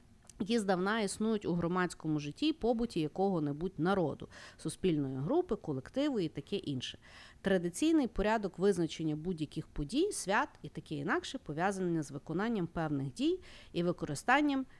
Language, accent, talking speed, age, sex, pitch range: Ukrainian, native, 125 wpm, 40-59, female, 155-230 Hz